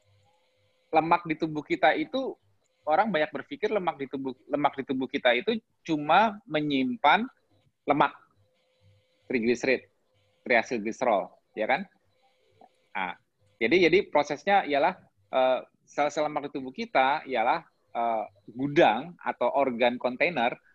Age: 20-39